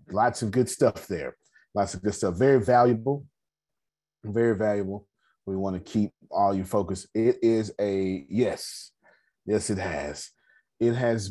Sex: male